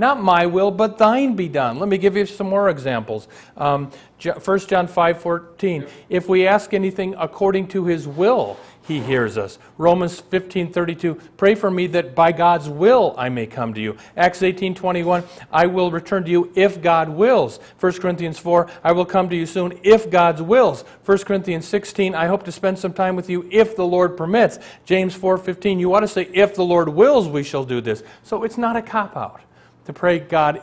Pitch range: 135-190 Hz